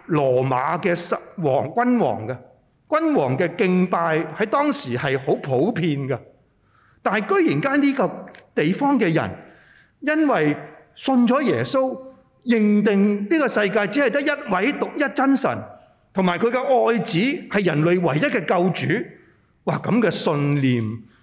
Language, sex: Chinese, male